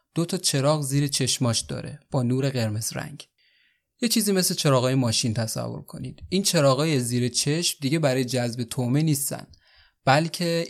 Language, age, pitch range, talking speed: Persian, 30-49, 120-150 Hz, 150 wpm